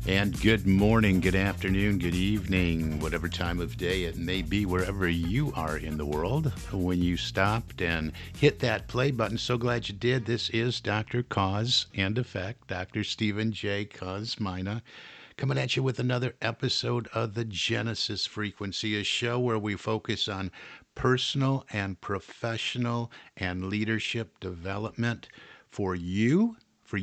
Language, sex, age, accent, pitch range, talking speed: English, male, 50-69, American, 95-120 Hz, 150 wpm